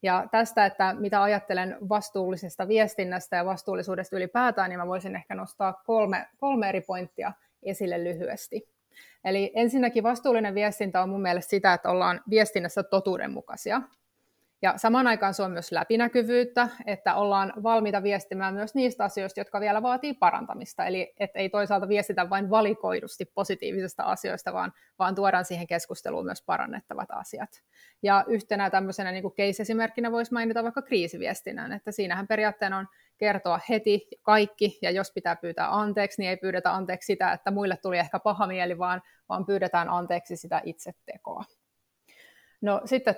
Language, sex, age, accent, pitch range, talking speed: Finnish, female, 30-49, native, 185-215 Hz, 150 wpm